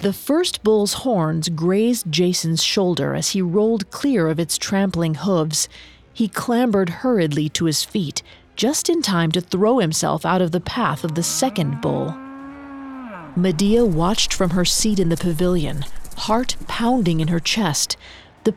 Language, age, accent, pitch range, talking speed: English, 40-59, American, 160-215 Hz, 160 wpm